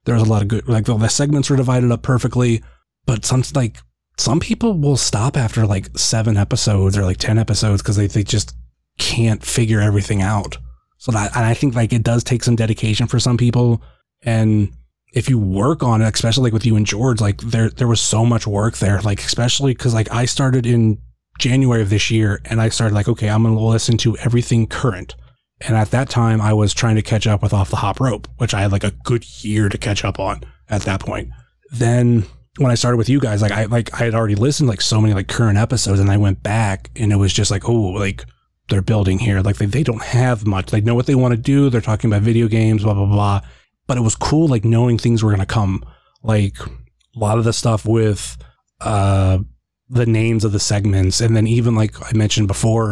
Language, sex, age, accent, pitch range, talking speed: English, male, 30-49, American, 105-120 Hz, 235 wpm